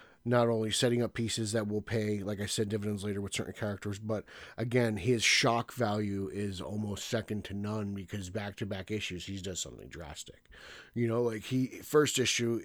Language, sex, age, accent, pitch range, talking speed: English, male, 30-49, American, 100-125 Hz, 195 wpm